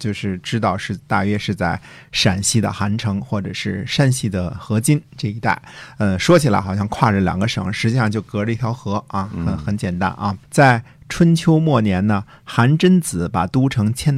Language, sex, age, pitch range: Chinese, male, 50-69, 100-130 Hz